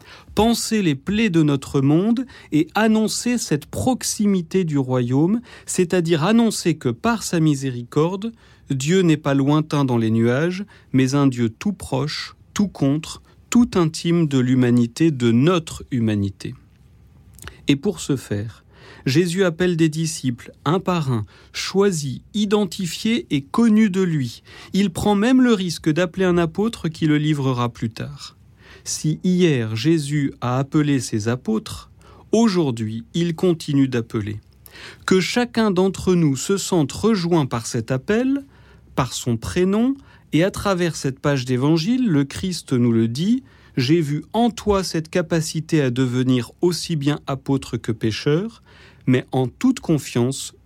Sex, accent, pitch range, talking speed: male, French, 125-180 Hz, 145 wpm